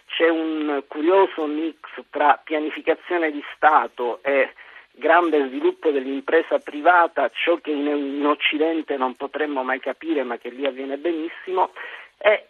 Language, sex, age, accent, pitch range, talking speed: Italian, male, 50-69, native, 140-180 Hz, 130 wpm